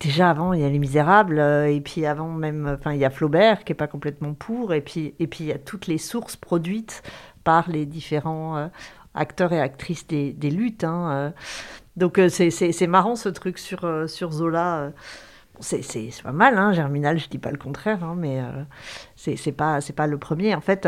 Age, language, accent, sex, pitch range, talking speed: 50-69, French, French, female, 150-195 Hz, 240 wpm